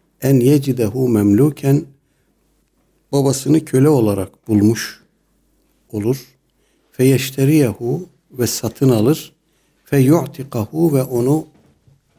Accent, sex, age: native, male, 60-79